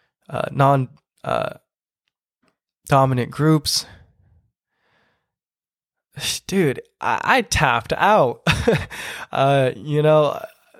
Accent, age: American, 20-39